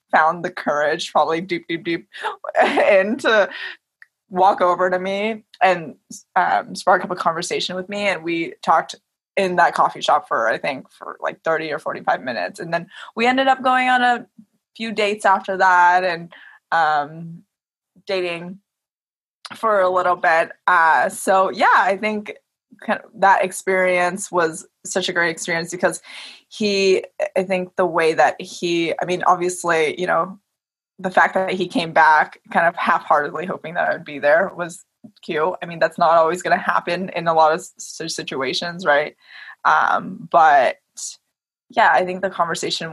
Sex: female